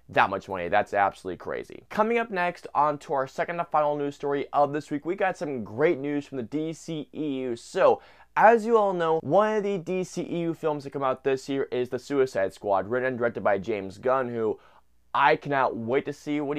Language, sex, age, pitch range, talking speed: English, male, 20-39, 125-170 Hz, 215 wpm